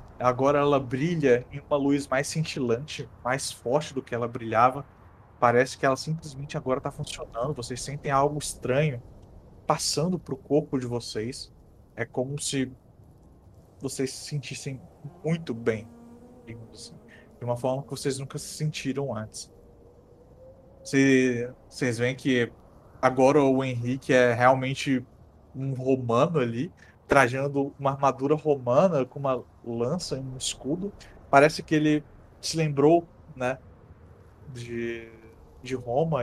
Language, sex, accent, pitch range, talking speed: Portuguese, male, Brazilian, 120-145 Hz, 130 wpm